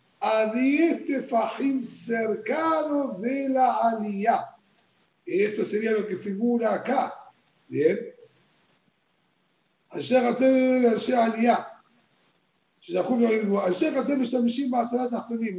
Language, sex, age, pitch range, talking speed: Spanish, male, 50-69, 210-265 Hz, 55 wpm